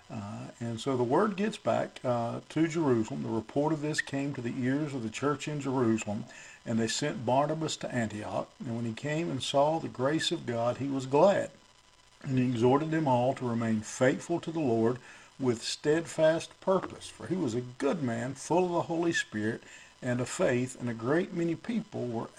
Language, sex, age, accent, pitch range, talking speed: English, male, 50-69, American, 120-150 Hz, 205 wpm